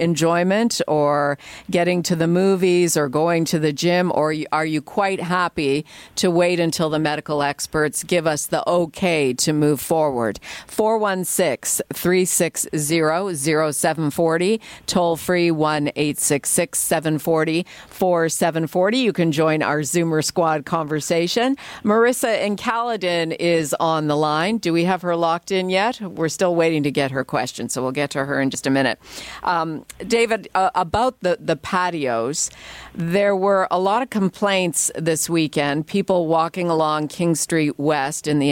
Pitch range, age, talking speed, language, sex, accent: 150-185 Hz, 50-69, 145 wpm, English, female, American